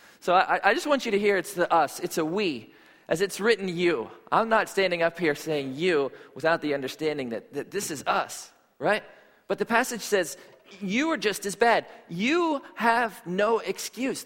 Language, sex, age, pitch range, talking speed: English, male, 40-59, 170-235 Hz, 200 wpm